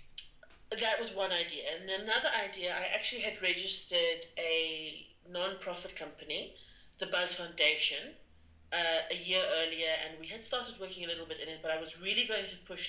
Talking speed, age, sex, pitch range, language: 175 wpm, 30-49, female, 155-190 Hz, English